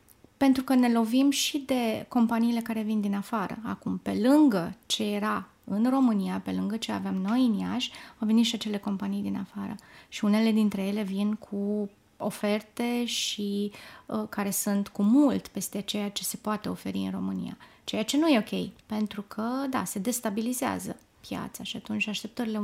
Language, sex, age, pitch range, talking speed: Romanian, female, 20-39, 205-245 Hz, 175 wpm